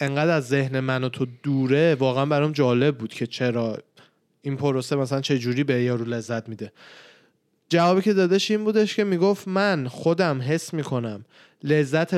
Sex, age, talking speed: male, 20-39, 165 wpm